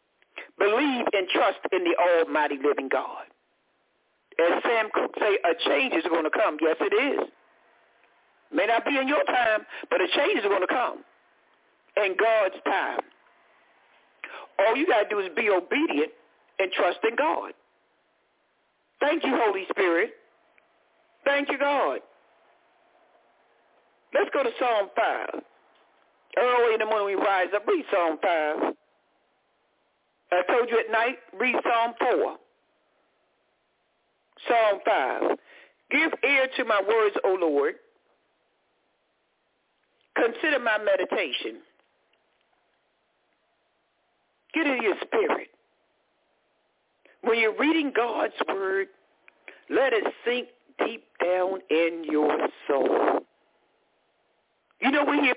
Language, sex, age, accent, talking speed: English, male, 60-79, American, 120 wpm